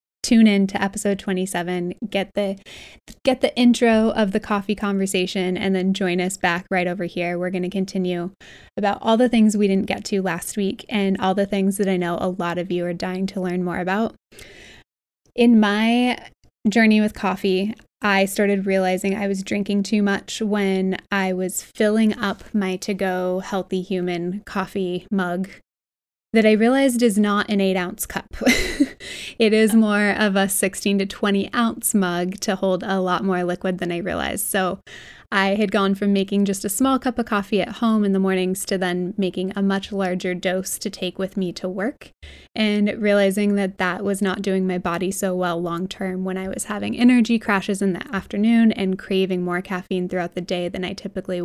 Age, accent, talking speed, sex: 20-39, American, 190 wpm, female